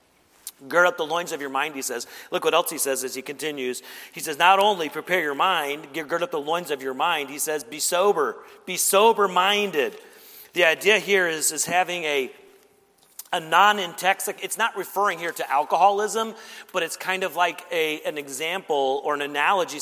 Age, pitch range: 40-59, 150-200 Hz